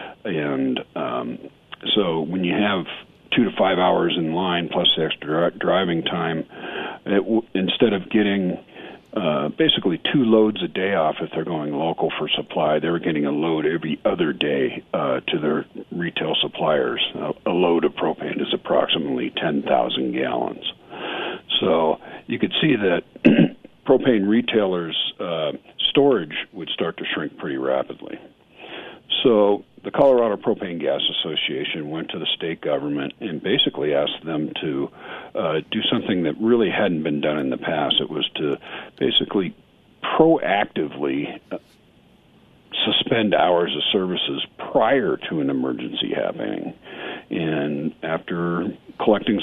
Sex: male